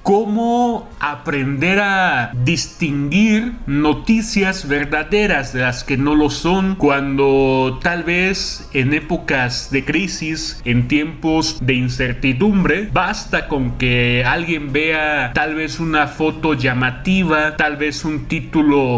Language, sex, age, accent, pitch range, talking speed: Spanish, male, 30-49, Mexican, 135-180 Hz, 115 wpm